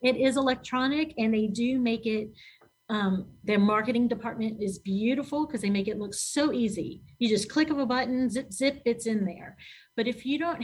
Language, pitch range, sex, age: English, 200-240 Hz, female, 40-59